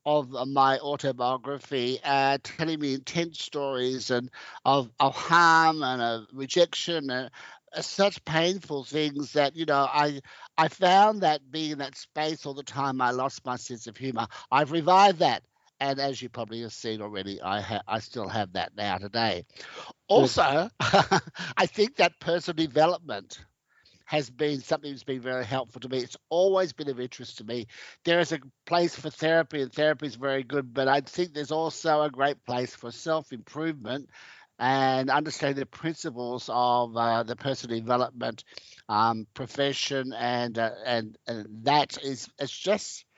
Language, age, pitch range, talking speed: English, 60-79, 125-160 Hz, 165 wpm